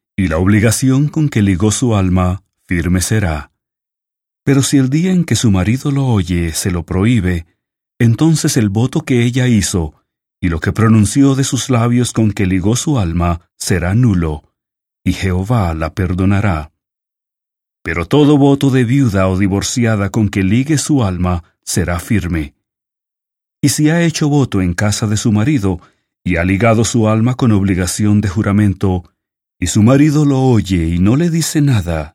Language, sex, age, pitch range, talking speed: English, male, 40-59, 90-125 Hz, 170 wpm